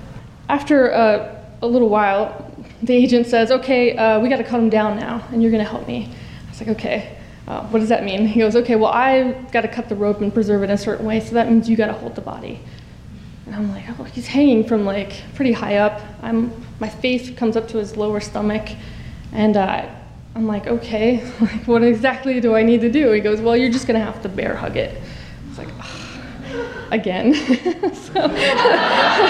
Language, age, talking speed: English, 20-39, 225 wpm